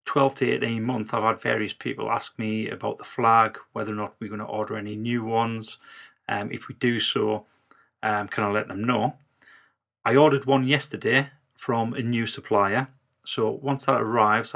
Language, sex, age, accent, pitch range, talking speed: English, male, 30-49, British, 105-120 Hz, 190 wpm